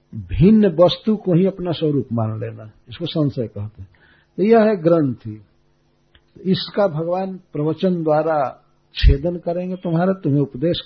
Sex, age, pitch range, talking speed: male, 60-79, 125-175 Hz, 145 wpm